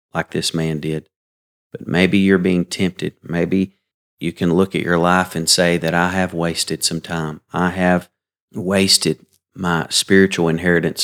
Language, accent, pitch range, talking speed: English, American, 80-95 Hz, 165 wpm